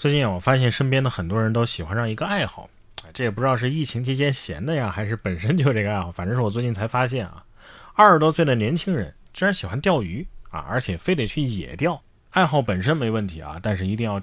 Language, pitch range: Chinese, 100-140 Hz